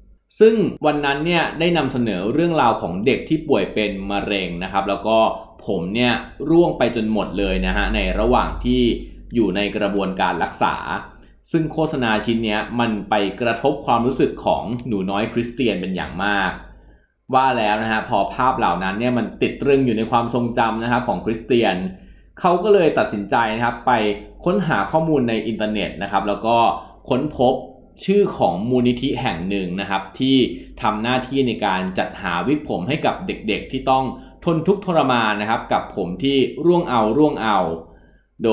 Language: Thai